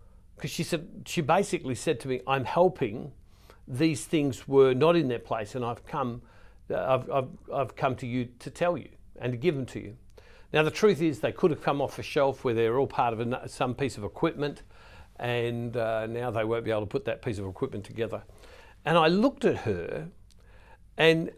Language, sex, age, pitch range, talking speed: English, male, 60-79, 110-155 Hz, 210 wpm